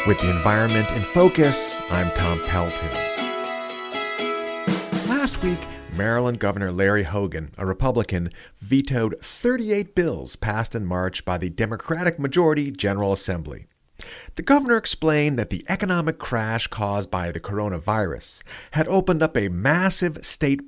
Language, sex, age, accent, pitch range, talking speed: English, male, 50-69, American, 100-165 Hz, 130 wpm